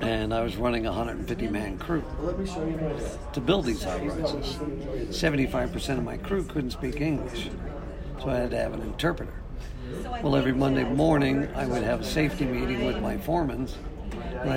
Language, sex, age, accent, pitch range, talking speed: English, male, 50-69, American, 125-145 Hz, 160 wpm